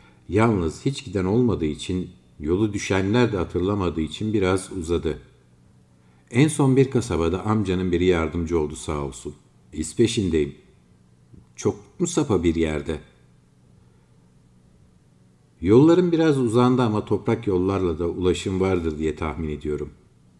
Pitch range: 75-105 Hz